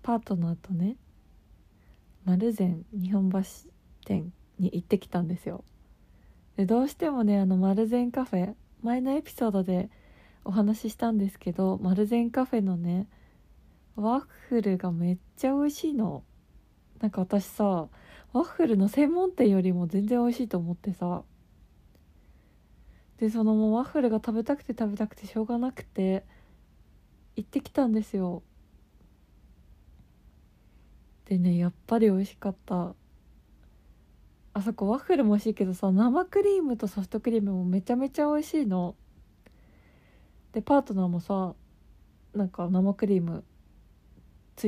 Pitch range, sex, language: 175-230 Hz, female, Japanese